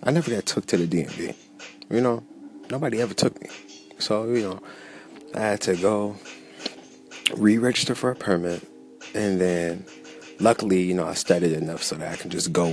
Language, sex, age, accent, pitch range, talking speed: English, male, 20-39, American, 80-105 Hz, 195 wpm